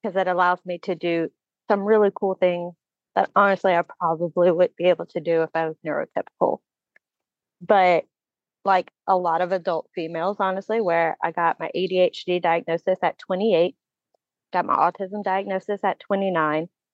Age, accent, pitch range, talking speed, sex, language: 30-49, American, 175-200 Hz, 160 wpm, female, English